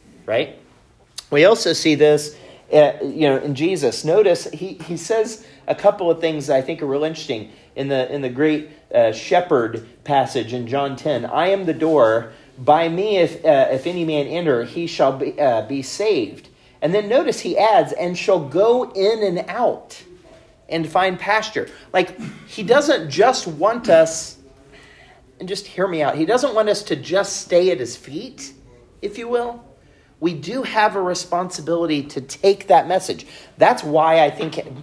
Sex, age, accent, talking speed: male, 40-59, American, 180 wpm